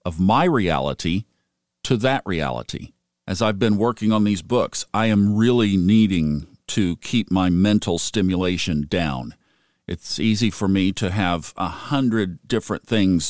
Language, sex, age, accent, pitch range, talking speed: English, male, 50-69, American, 95-120 Hz, 150 wpm